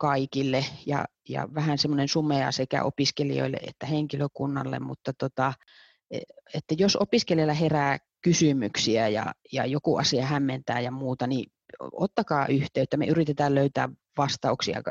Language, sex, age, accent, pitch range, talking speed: Finnish, female, 30-49, native, 135-150 Hz, 120 wpm